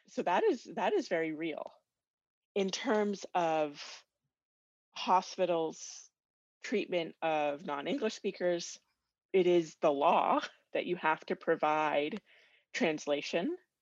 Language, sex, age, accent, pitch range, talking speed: English, female, 30-49, American, 155-195 Hz, 110 wpm